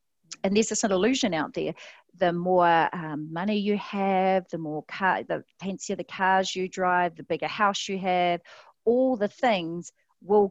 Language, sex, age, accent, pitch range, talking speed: English, female, 40-59, Australian, 170-220 Hz, 185 wpm